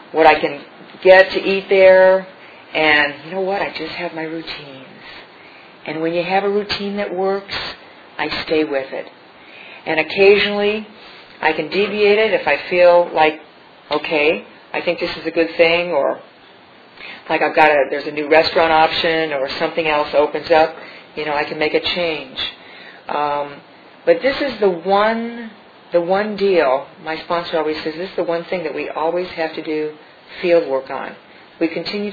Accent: American